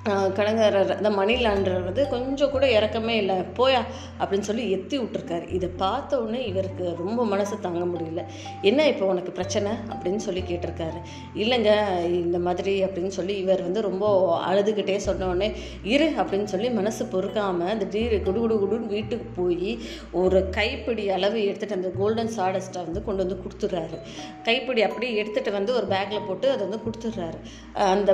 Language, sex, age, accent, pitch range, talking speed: Tamil, female, 20-39, native, 190-225 Hz, 150 wpm